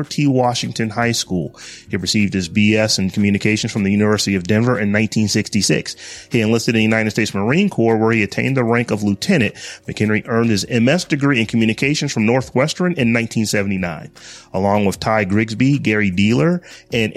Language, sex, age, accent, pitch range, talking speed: English, male, 30-49, American, 105-130 Hz, 175 wpm